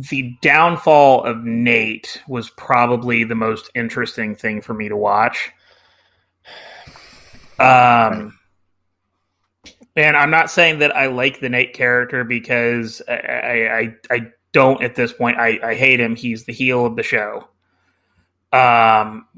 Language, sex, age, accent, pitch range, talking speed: English, male, 30-49, American, 115-135 Hz, 135 wpm